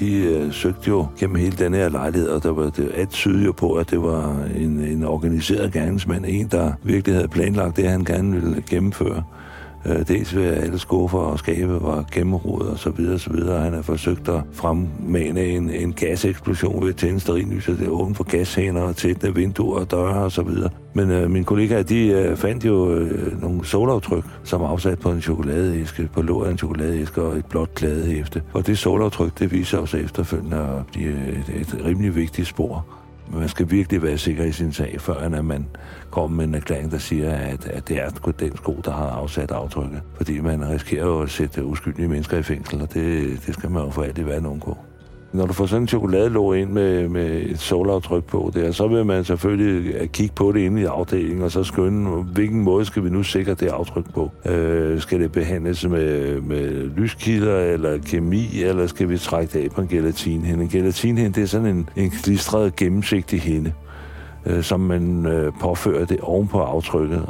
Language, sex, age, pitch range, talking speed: Danish, male, 60-79, 80-95 Hz, 200 wpm